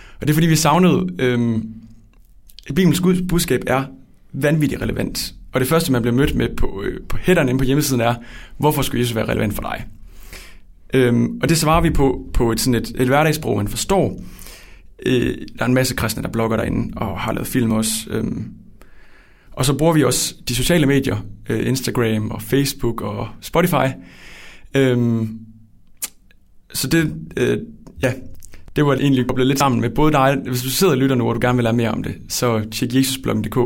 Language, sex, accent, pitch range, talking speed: Danish, male, native, 105-135 Hz, 195 wpm